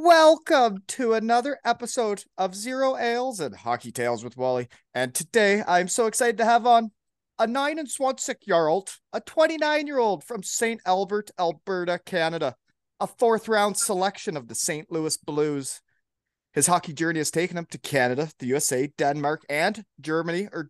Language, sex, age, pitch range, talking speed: English, male, 30-49, 150-210 Hz, 155 wpm